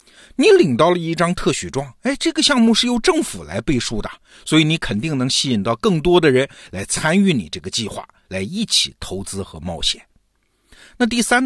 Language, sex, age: Chinese, male, 50-69